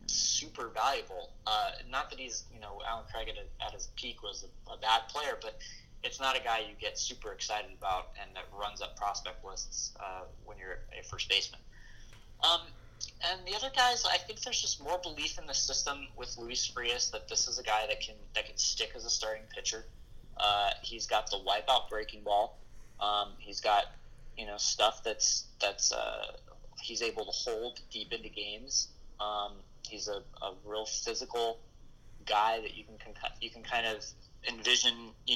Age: 20-39